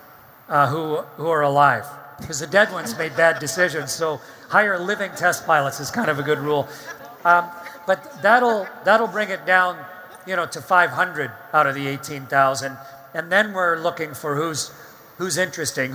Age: 40-59